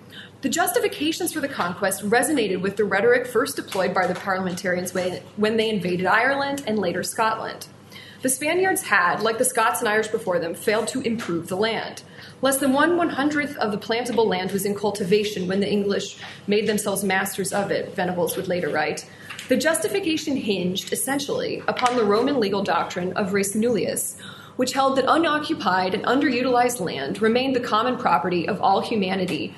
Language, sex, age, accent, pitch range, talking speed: English, female, 20-39, American, 195-255 Hz, 175 wpm